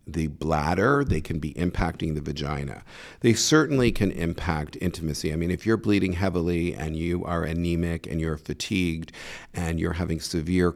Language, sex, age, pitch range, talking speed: English, male, 50-69, 80-95 Hz, 165 wpm